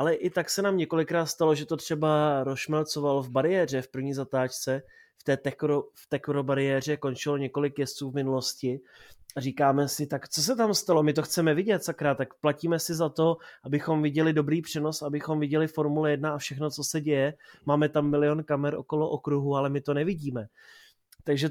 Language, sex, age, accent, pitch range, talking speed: Czech, male, 30-49, native, 140-155 Hz, 190 wpm